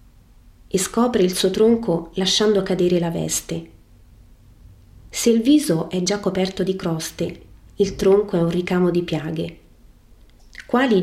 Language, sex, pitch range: Italian, female, 165-205 Hz